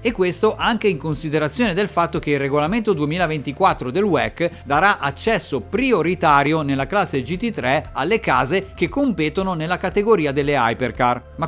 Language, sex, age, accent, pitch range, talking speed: Italian, male, 50-69, native, 140-190 Hz, 145 wpm